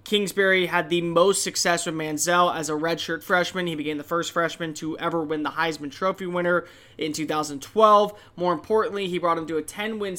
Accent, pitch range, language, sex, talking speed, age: American, 155-195 Hz, English, male, 195 wpm, 20-39